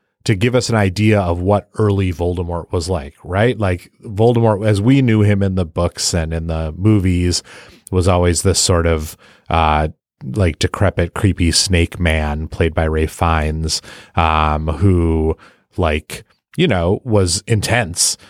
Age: 30-49